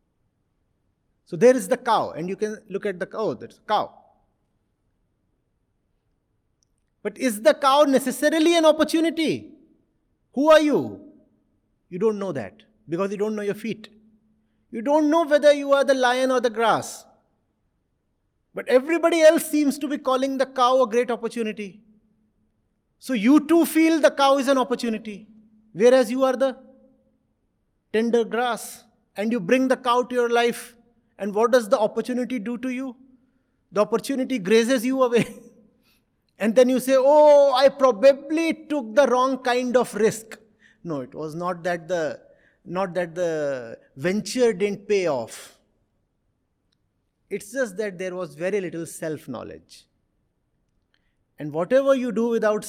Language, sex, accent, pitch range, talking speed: English, male, Indian, 210-265 Hz, 150 wpm